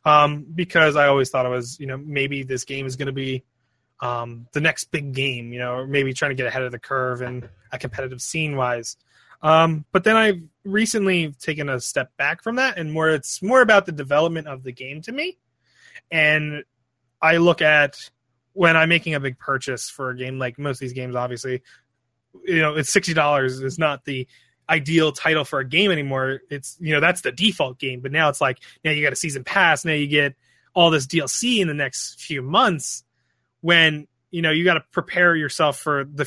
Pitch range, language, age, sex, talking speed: 130-170 Hz, English, 20-39, male, 215 wpm